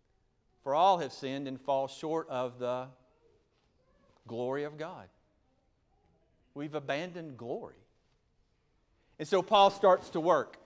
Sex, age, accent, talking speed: male, 40-59, American, 120 wpm